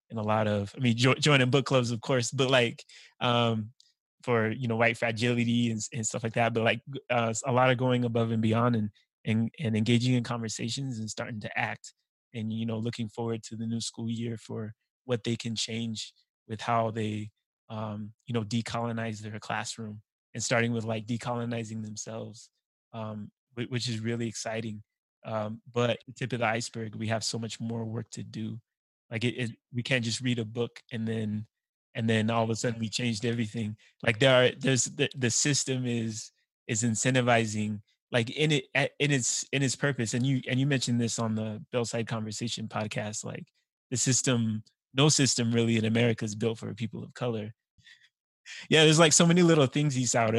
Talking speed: 195 wpm